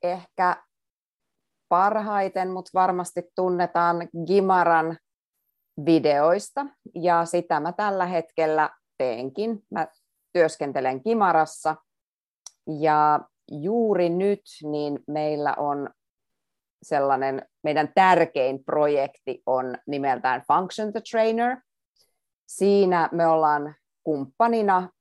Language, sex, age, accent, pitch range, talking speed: Finnish, female, 30-49, native, 140-185 Hz, 80 wpm